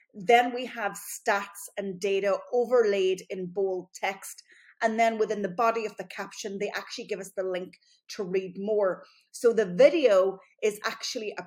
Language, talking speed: English, 175 wpm